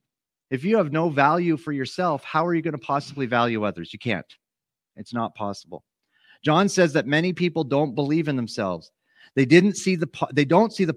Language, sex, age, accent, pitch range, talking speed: English, male, 40-59, American, 120-155 Hz, 210 wpm